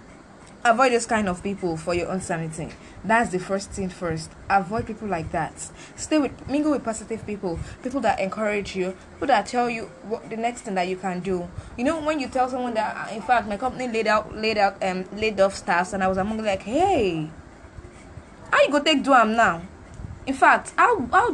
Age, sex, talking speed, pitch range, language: 20-39, female, 220 wpm, 185-255 Hz, English